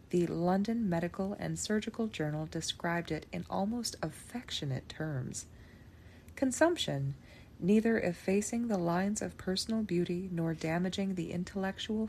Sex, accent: female, American